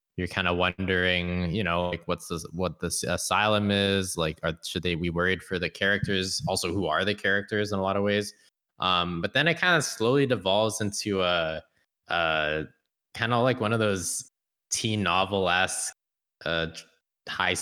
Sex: male